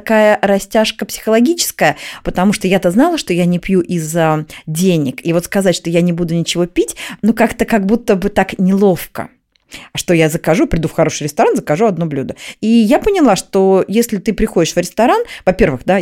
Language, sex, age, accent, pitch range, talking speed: Russian, female, 30-49, native, 165-230 Hz, 190 wpm